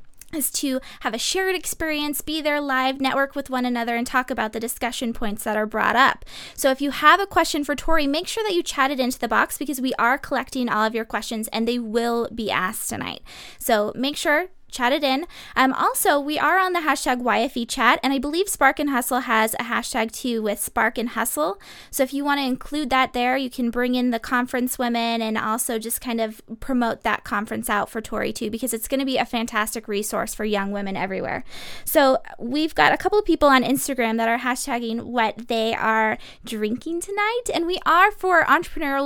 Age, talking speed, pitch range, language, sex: 20-39, 220 wpm, 235-295 Hz, English, female